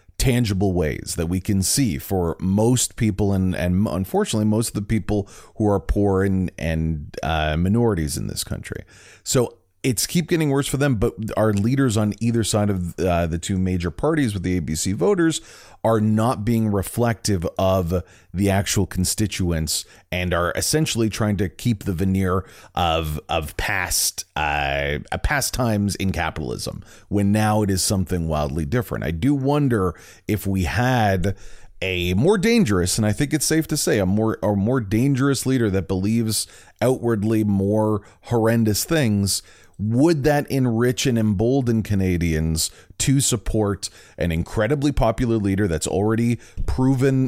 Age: 30-49